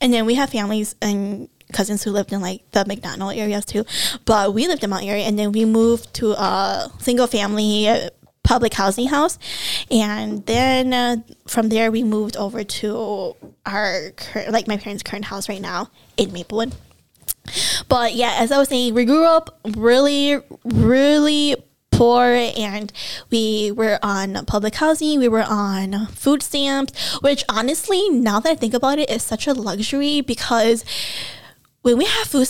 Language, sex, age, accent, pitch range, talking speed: English, female, 10-29, American, 210-260 Hz, 170 wpm